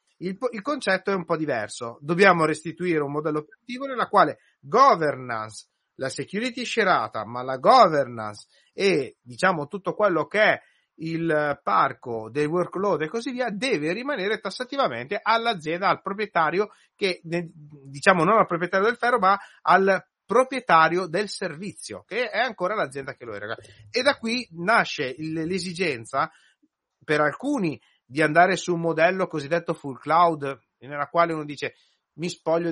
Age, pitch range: 30-49, 150-195 Hz